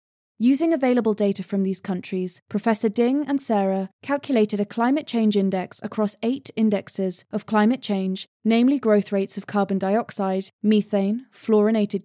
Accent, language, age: British, English, 20-39